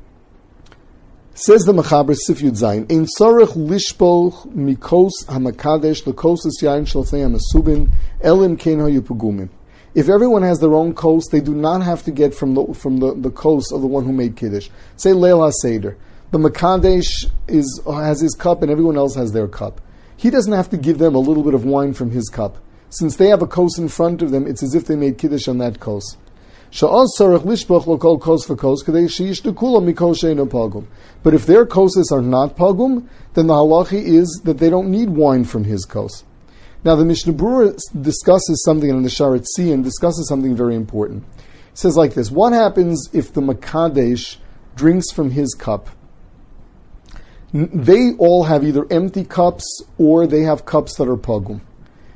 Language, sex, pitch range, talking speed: English, male, 125-175 Hz, 150 wpm